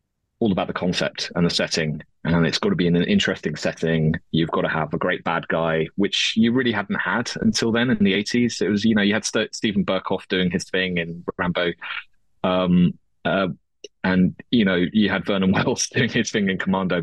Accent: British